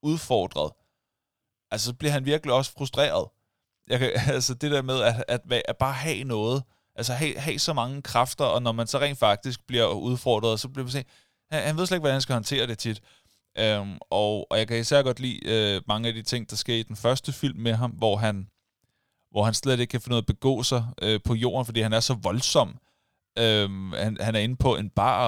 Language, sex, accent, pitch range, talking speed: Danish, male, native, 110-135 Hz, 235 wpm